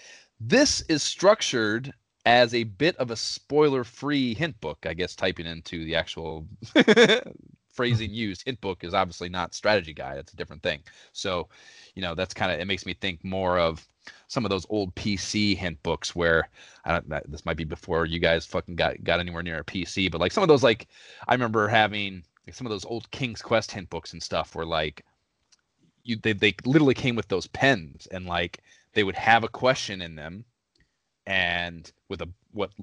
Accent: American